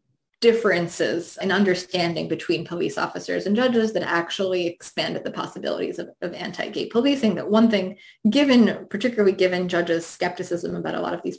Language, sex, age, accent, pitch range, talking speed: English, female, 20-39, American, 180-235 Hz, 160 wpm